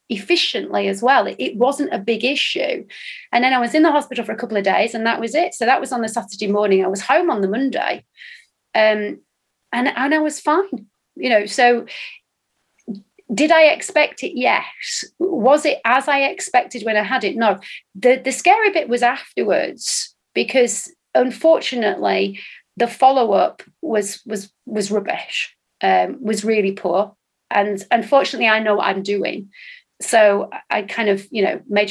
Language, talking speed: English, 175 wpm